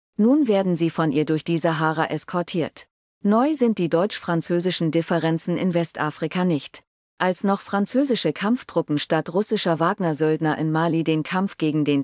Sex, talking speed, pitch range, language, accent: female, 150 wpm, 160-195 Hz, German, German